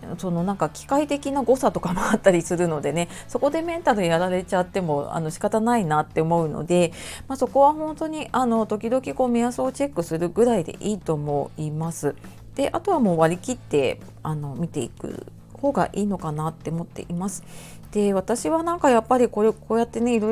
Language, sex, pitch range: Japanese, female, 170-235 Hz